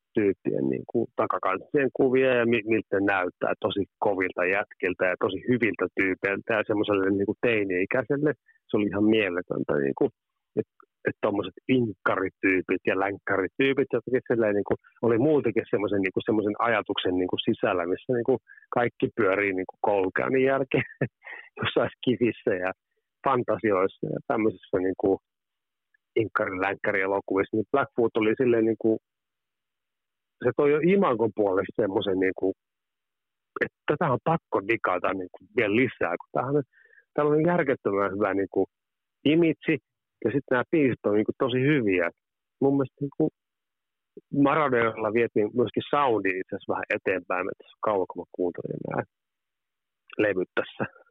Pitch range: 100-135 Hz